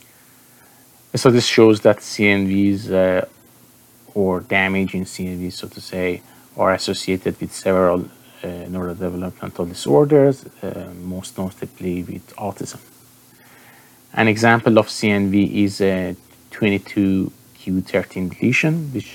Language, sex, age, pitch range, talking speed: English, male, 30-49, 95-120 Hz, 105 wpm